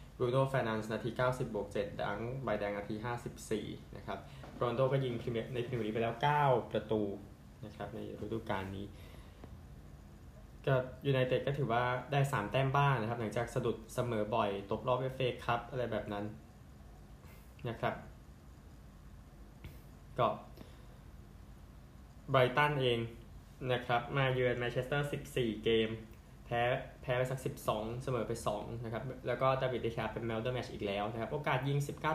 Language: Thai